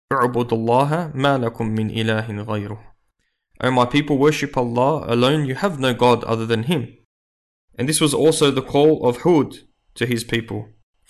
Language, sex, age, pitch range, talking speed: English, male, 20-39, 115-135 Hz, 145 wpm